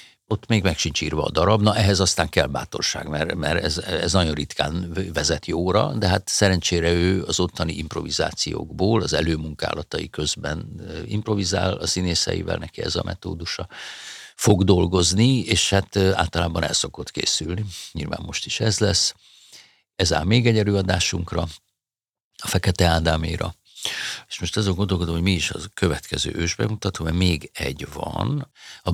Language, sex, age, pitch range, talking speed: Hungarian, male, 50-69, 85-105 Hz, 150 wpm